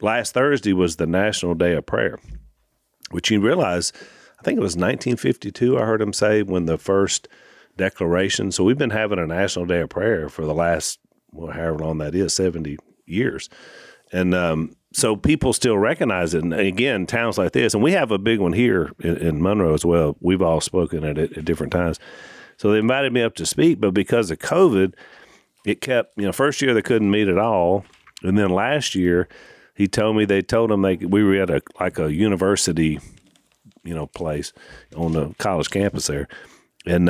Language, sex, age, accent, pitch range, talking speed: English, male, 40-59, American, 85-105 Hz, 195 wpm